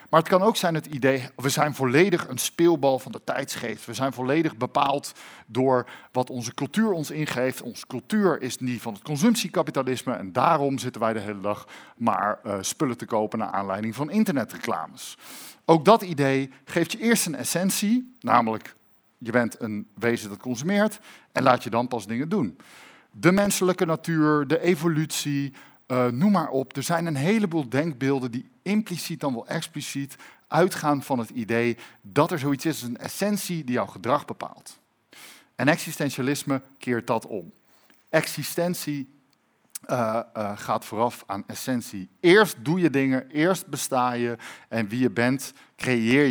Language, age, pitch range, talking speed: Dutch, 50-69, 120-165 Hz, 165 wpm